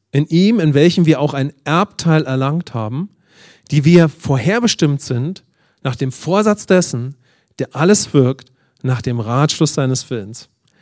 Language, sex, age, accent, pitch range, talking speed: English, male, 40-59, German, 135-175 Hz, 145 wpm